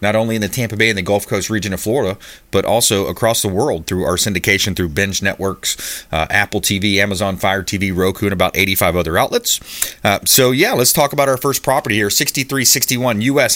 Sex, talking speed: male, 210 wpm